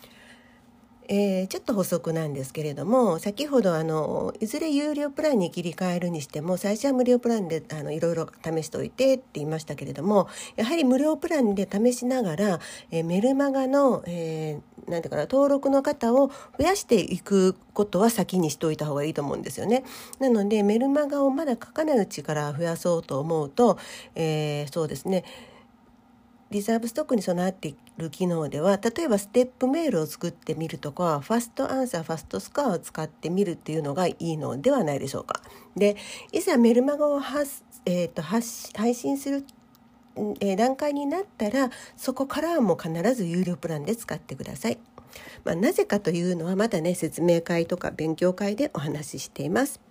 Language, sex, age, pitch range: Japanese, female, 50-69, 165-260 Hz